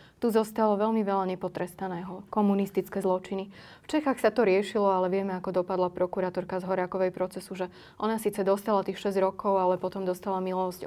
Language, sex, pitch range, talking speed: Slovak, female, 190-210 Hz, 170 wpm